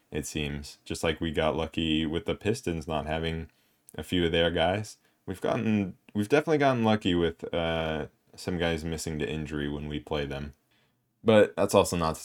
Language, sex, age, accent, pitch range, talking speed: English, male, 20-39, American, 75-90 Hz, 190 wpm